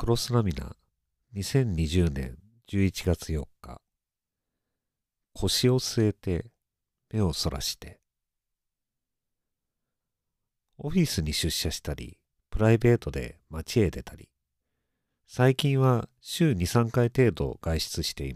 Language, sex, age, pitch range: Japanese, male, 50-69, 80-125 Hz